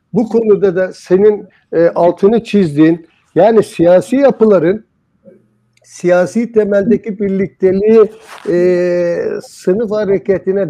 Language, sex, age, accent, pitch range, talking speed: Turkish, male, 60-79, native, 175-230 Hz, 90 wpm